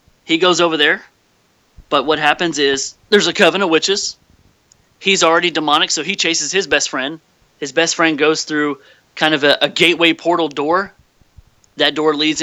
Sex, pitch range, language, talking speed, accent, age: male, 145-180 Hz, English, 180 wpm, American, 30-49